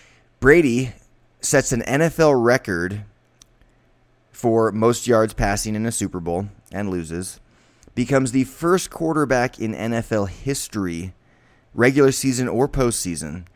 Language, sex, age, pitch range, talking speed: English, male, 20-39, 95-125 Hz, 115 wpm